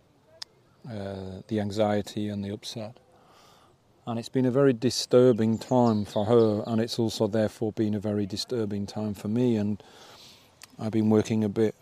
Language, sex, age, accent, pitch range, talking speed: English, male, 40-59, British, 105-115 Hz, 160 wpm